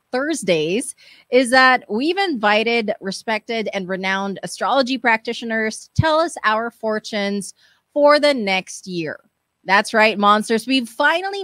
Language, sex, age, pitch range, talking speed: English, female, 20-39, 200-280 Hz, 125 wpm